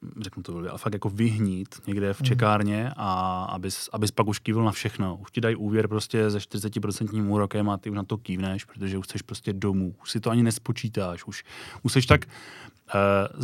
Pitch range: 100-115 Hz